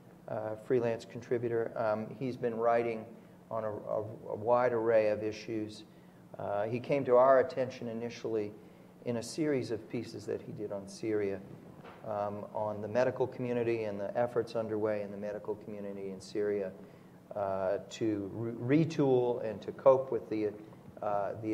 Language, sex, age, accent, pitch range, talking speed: English, male, 40-59, American, 100-120 Hz, 160 wpm